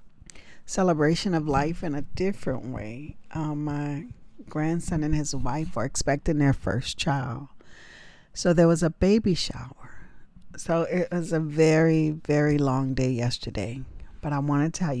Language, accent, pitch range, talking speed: English, American, 130-165 Hz, 150 wpm